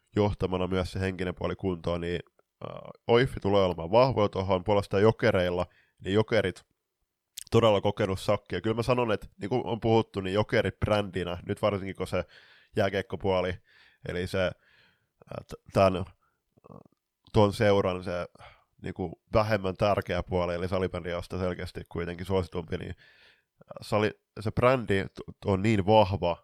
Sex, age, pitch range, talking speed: male, 20-39, 90-105 Hz, 130 wpm